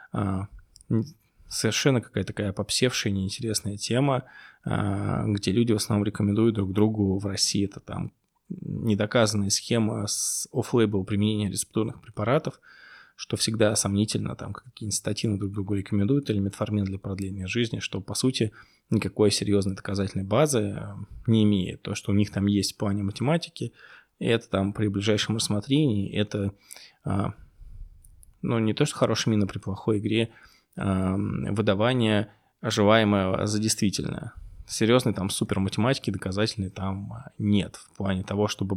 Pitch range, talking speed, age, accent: 100-110 Hz, 130 wpm, 20-39, native